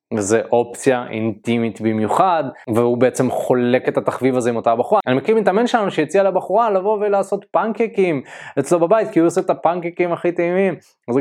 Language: Hebrew